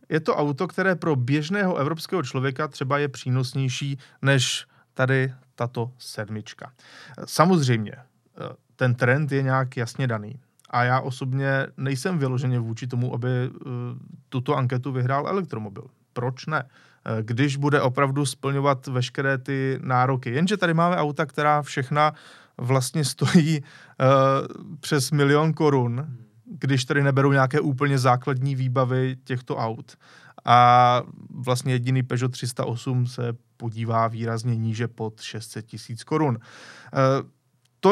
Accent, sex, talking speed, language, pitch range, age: native, male, 125 wpm, Czech, 125-145 Hz, 30-49